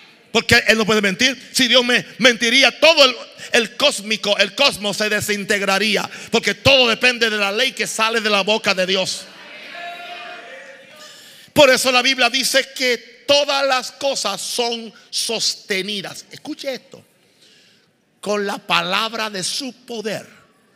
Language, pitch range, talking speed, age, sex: Spanish, 200-260 Hz, 140 wpm, 50-69, male